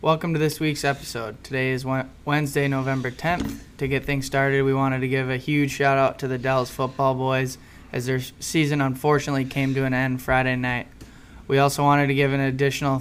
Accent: American